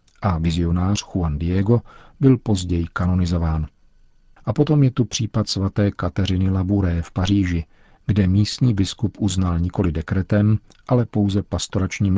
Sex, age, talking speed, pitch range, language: male, 50-69, 130 wpm, 90-110 Hz, Czech